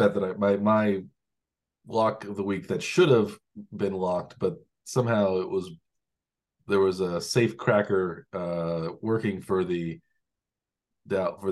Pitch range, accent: 90-120 Hz, American